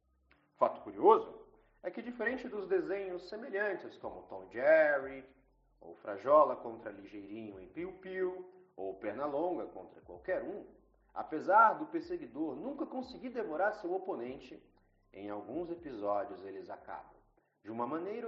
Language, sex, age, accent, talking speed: Portuguese, male, 40-59, Brazilian, 125 wpm